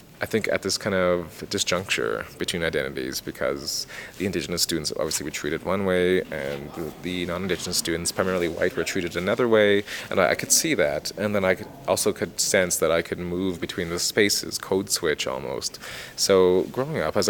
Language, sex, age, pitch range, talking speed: English, male, 20-39, 90-110 Hz, 195 wpm